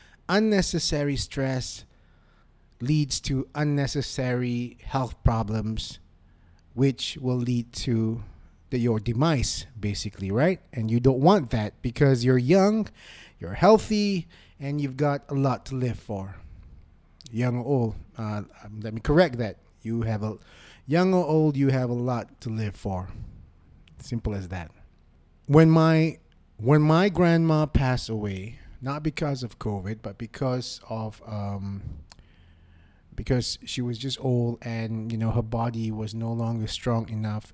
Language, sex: English, male